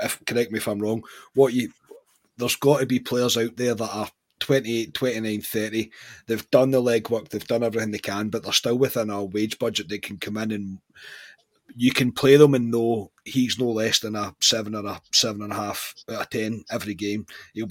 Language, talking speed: English, 210 wpm